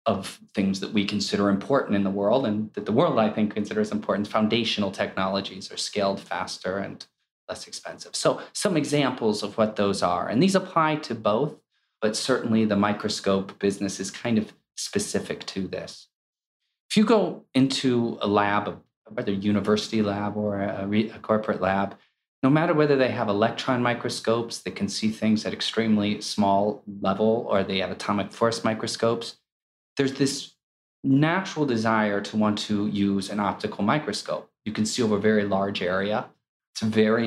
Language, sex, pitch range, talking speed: English, male, 100-115 Hz, 170 wpm